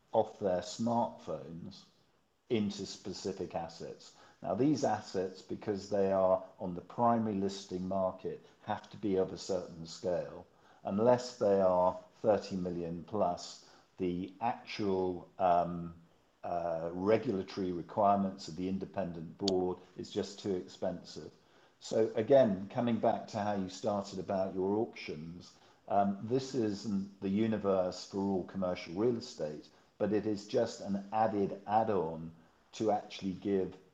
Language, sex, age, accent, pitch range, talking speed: English, male, 50-69, British, 90-105 Hz, 135 wpm